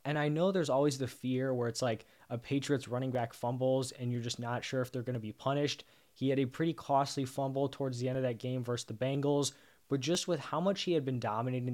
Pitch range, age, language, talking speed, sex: 120-140 Hz, 20-39, English, 255 wpm, male